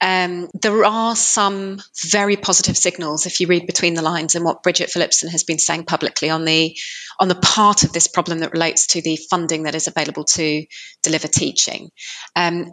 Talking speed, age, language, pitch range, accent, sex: 195 wpm, 30-49, English, 160-180 Hz, British, female